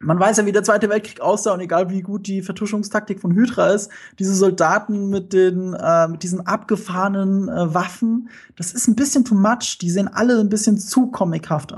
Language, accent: German, German